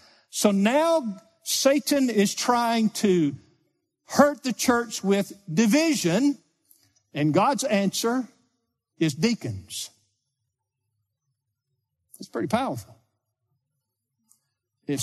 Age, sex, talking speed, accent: 50-69, male, 80 wpm, American